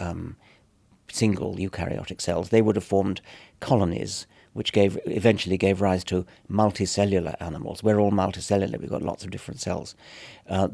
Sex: male